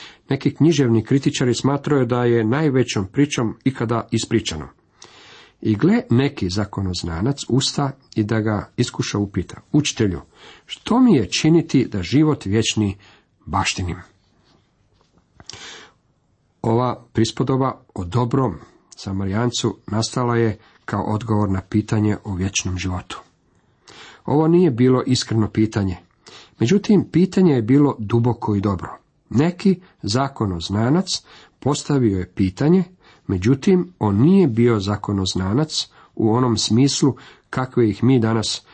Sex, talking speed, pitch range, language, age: male, 110 wpm, 105-140 Hz, Croatian, 50-69